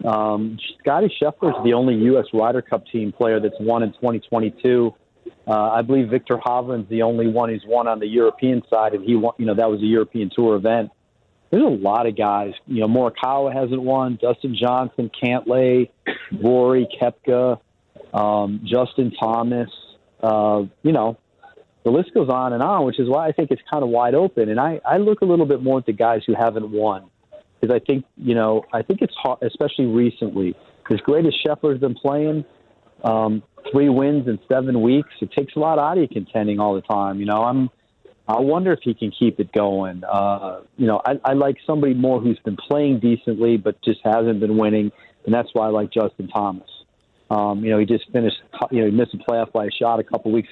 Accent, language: American, English